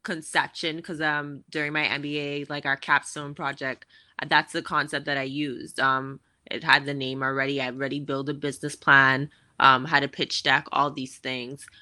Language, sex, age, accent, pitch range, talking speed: English, female, 20-39, American, 140-160 Hz, 185 wpm